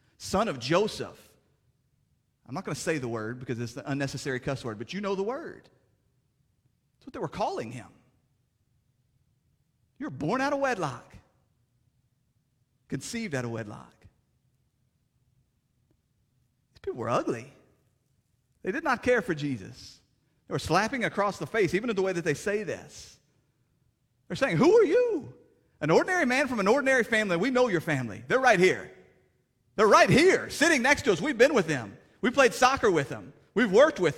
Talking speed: 170 wpm